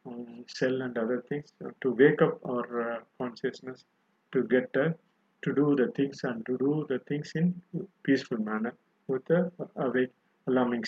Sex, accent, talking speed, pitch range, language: male, native, 160 wpm, 130-185 Hz, Tamil